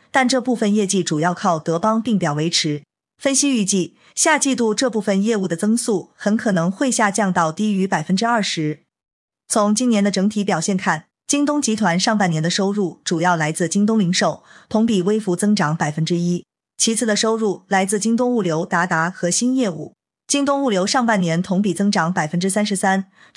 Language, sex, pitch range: Chinese, female, 175-225 Hz